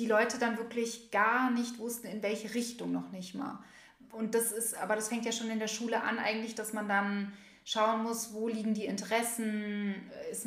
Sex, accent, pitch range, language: female, German, 200-230 Hz, German